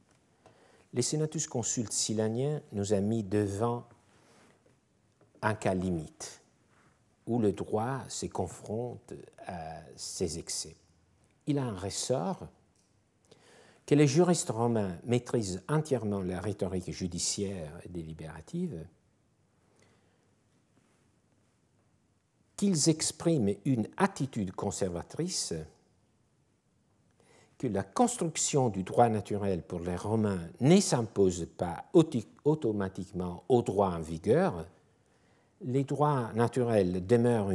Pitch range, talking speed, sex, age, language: 95-125 Hz, 95 wpm, male, 60-79, French